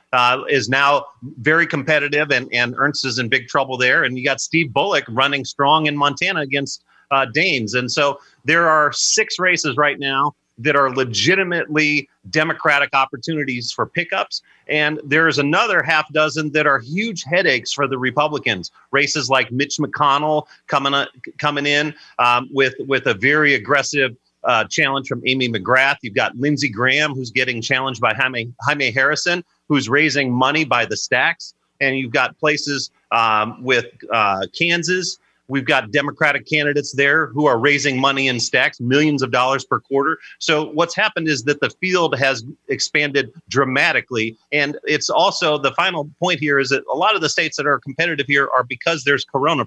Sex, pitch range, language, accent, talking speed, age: male, 130-150 Hz, English, American, 175 wpm, 40-59